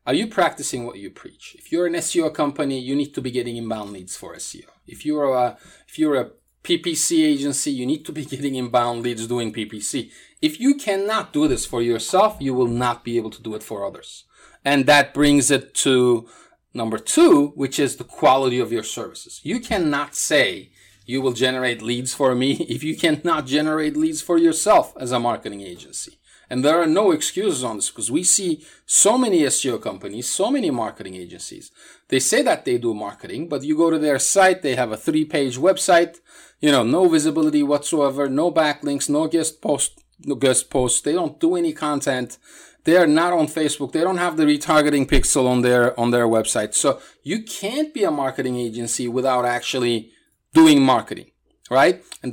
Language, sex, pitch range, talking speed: English, male, 125-190 Hz, 195 wpm